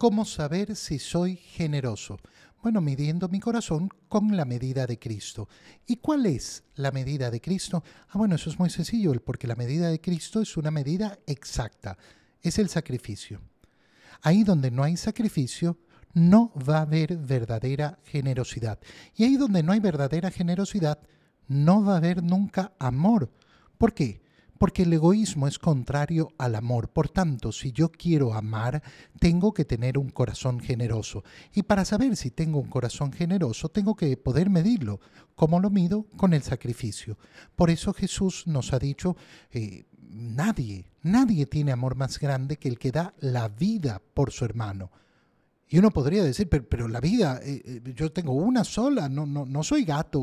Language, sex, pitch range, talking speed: Spanish, male, 130-190 Hz, 170 wpm